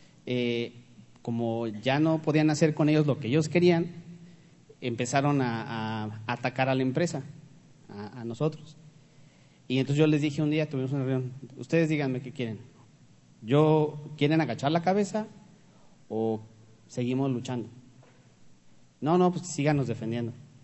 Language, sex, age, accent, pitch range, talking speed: Spanish, male, 40-59, Mexican, 125-165 Hz, 140 wpm